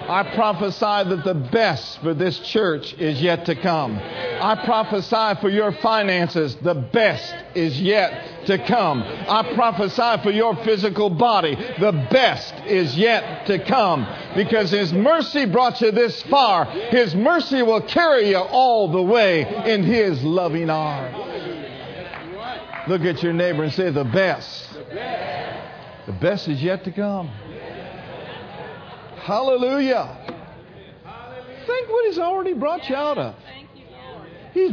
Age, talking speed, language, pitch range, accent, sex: 50-69, 135 wpm, English, 165-225 Hz, American, male